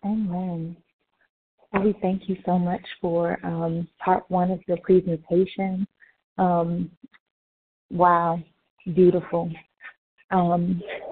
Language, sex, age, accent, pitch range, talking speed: English, female, 30-49, American, 165-185 Hz, 90 wpm